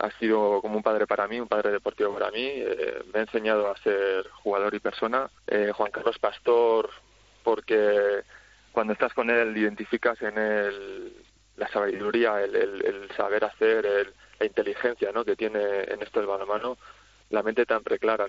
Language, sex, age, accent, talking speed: Spanish, male, 20-39, Spanish, 175 wpm